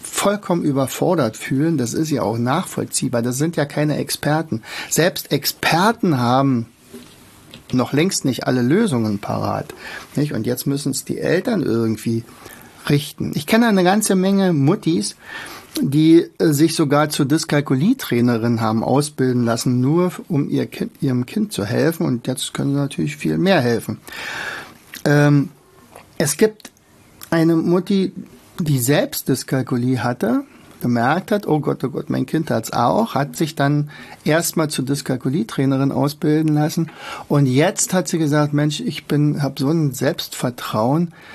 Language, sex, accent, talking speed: German, male, German, 150 wpm